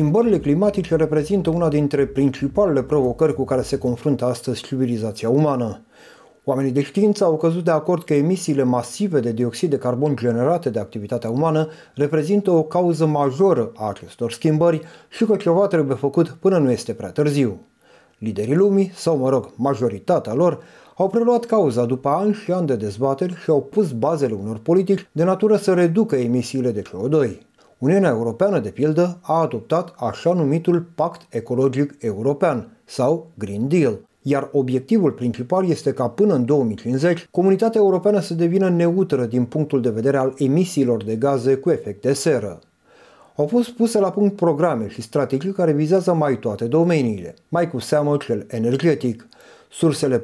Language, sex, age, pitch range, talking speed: Romanian, male, 30-49, 125-175 Hz, 160 wpm